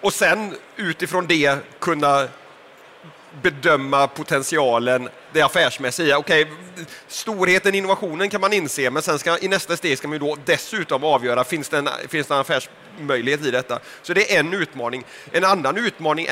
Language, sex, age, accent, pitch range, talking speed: Swedish, male, 30-49, native, 140-175 Hz, 165 wpm